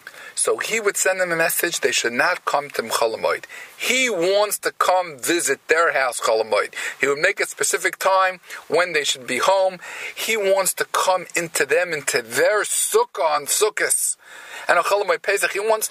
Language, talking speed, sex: English, 185 wpm, male